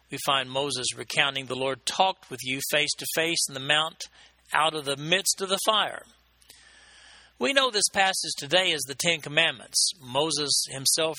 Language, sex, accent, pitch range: English, male, American, 135-180 Hz